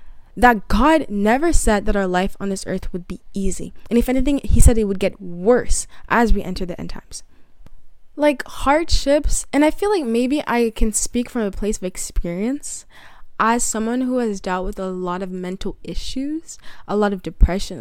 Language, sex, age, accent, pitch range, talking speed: English, female, 20-39, American, 185-240 Hz, 195 wpm